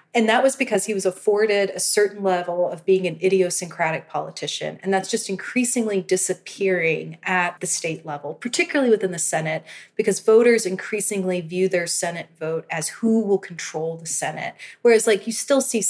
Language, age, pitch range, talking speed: English, 30-49, 170-205 Hz, 175 wpm